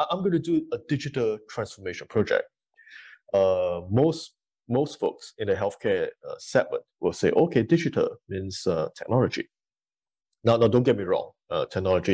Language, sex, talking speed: English, male, 160 wpm